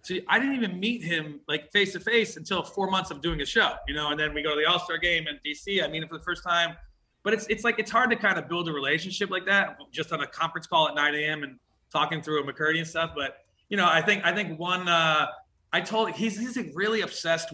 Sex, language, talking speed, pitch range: male, English, 275 wpm, 155-220 Hz